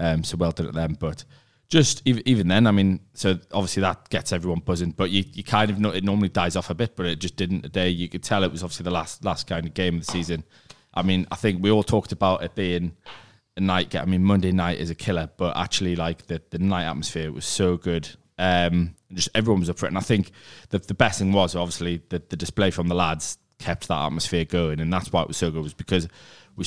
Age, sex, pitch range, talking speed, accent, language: 20-39, male, 85-95 Hz, 265 wpm, British, English